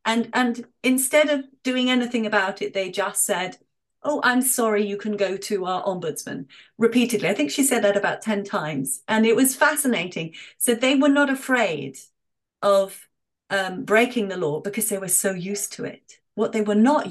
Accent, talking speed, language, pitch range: British, 190 wpm, English, 185-230 Hz